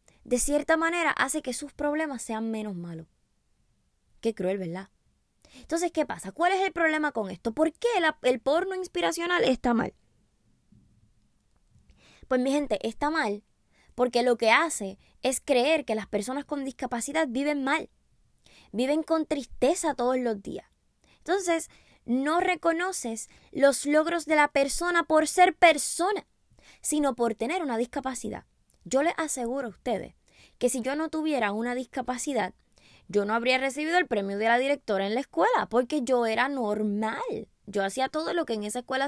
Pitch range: 230-310 Hz